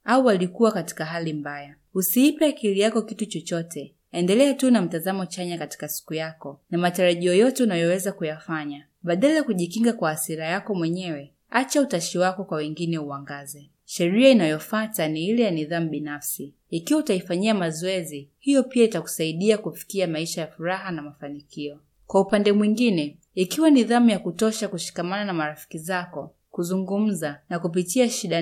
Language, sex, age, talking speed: Swahili, female, 30-49, 145 wpm